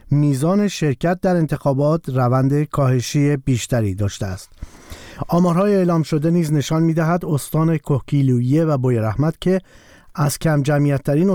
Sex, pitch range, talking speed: male, 130-160 Hz, 135 wpm